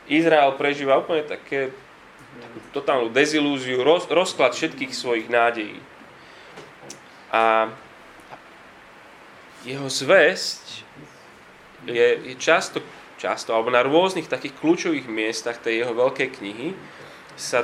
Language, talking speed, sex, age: Slovak, 100 wpm, male, 20-39